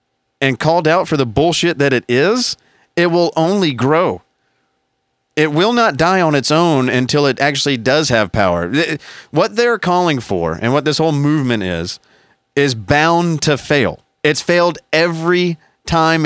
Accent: American